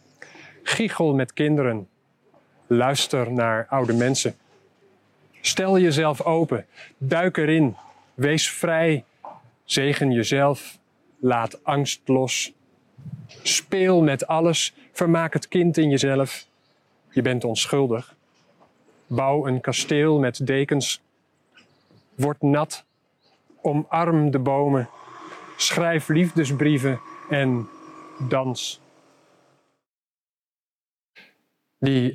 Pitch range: 125-155 Hz